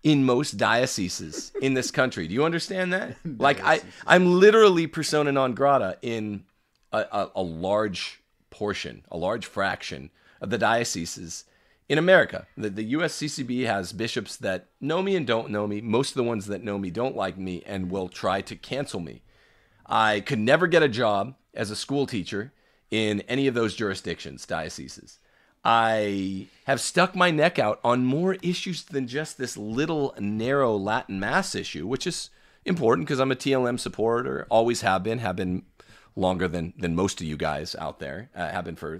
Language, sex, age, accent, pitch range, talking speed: English, male, 40-59, American, 95-135 Hz, 180 wpm